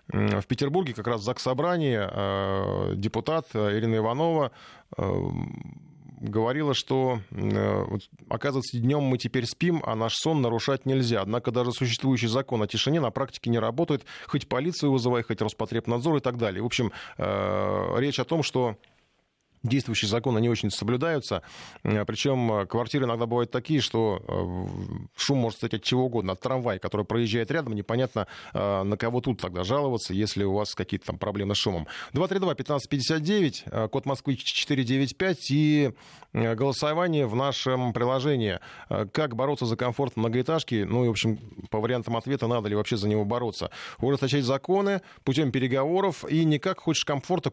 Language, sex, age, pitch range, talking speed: Russian, male, 20-39, 110-140 Hz, 150 wpm